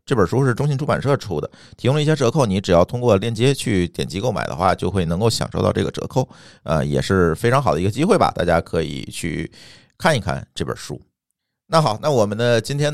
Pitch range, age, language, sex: 85-120 Hz, 50-69, Chinese, male